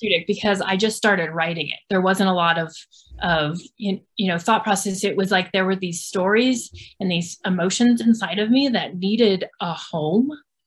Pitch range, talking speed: 175-210 Hz, 185 wpm